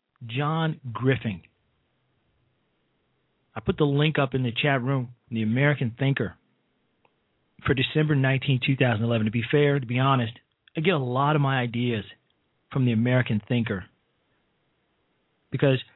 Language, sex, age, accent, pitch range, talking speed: English, male, 40-59, American, 120-150 Hz, 135 wpm